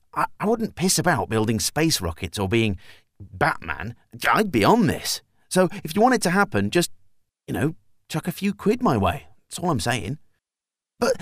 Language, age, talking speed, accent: English, 40-59, 185 wpm, British